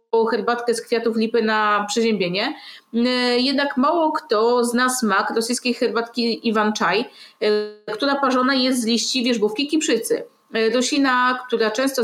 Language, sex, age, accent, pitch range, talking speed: Polish, female, 30-49, native, 230-270 Hz, 120 wpm